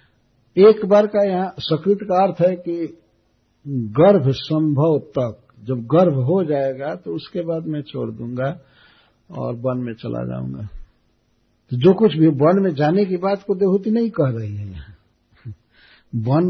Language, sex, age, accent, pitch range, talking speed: Hindi, male, 60-79, native, 115-165 Hz, 160 wpm